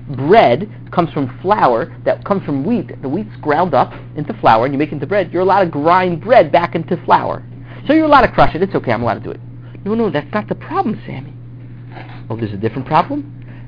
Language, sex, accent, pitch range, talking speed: English, male, American, 120-180 Hz, 230 wpm